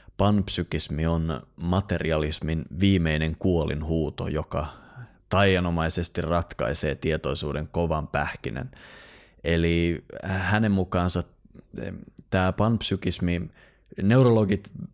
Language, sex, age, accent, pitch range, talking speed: Finnish, male, 20-39, native, 80-100 Hz, 70 wpm